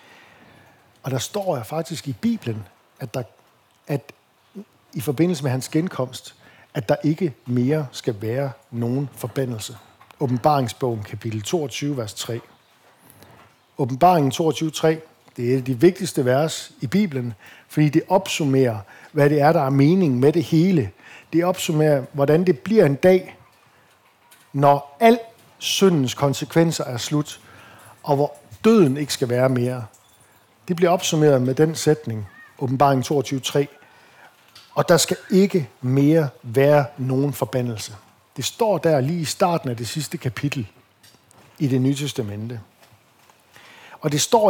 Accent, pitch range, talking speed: native, 125-165 Hz, 140 wpm